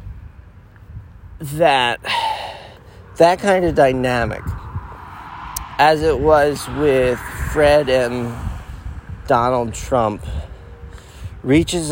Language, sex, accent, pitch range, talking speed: English, male, American, 90-145 Hz, 70 wpm